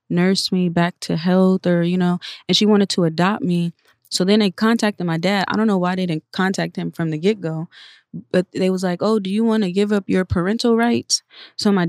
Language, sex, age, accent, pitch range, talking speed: English, female, 20-39, American, 170-205 Hz, 240 wpm